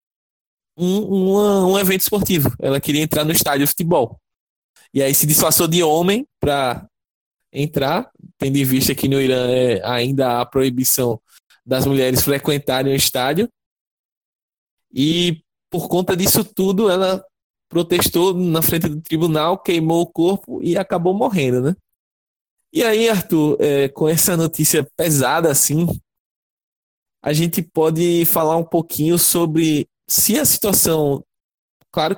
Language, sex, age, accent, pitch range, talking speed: Portuguese, male, 20-39, Brazilian, 135-180 Hz, 140 wpm